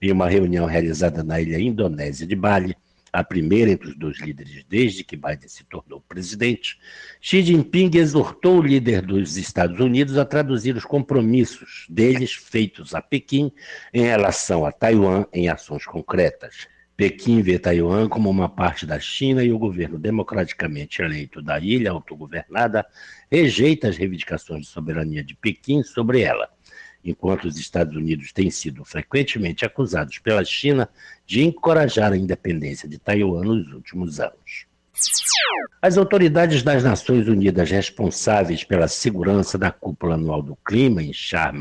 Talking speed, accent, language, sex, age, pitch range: 150 wpm, Brazilian, Portuguese, male, 60-79, 85-130 Hz